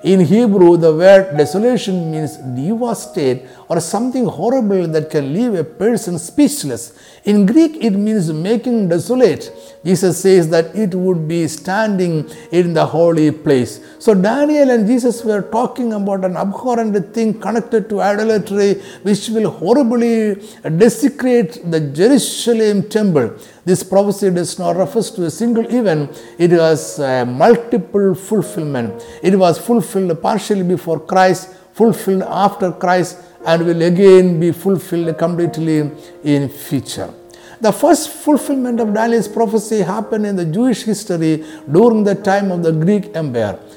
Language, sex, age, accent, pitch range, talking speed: Malayalam, male, 50-69, native, 165-215 Hz, 140 wpm